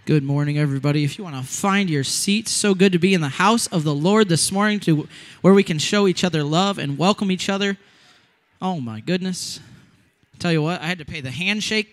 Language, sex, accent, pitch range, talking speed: English, male, American, 155-210 Hz, 230 wpm